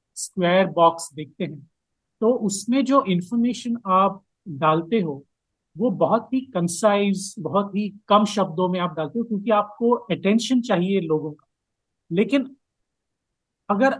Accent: native